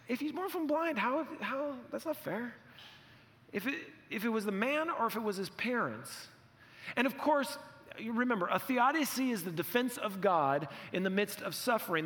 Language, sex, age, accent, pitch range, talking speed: English, male, 40-59, American, 160-240 Hz, 200 wpm